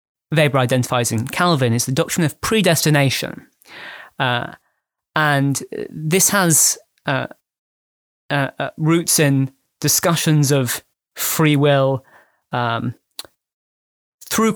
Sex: male